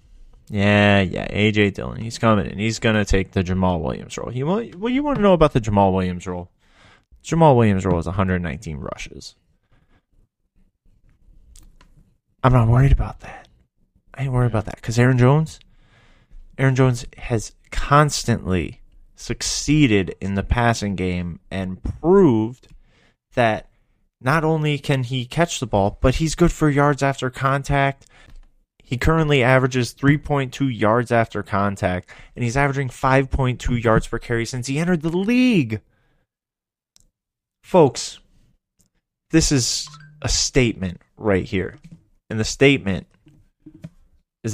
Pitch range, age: 100-145 Hz, 20-39